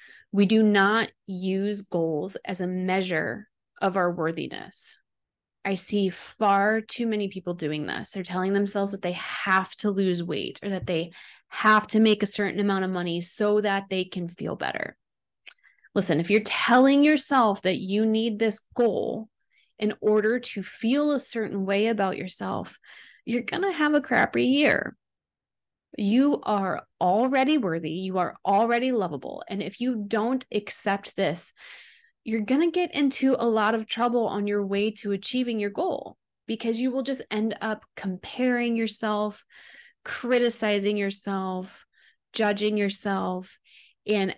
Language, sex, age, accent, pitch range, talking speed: English, female, 20-39, American, 195-230 Hz, 155 wpm